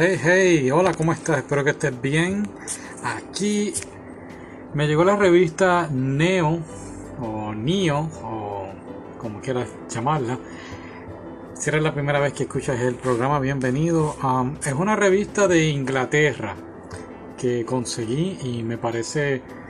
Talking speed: 130 wpm